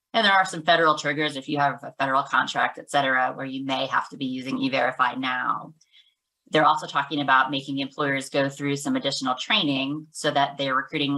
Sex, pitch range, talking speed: female, 135-155 Hz, 205 wpm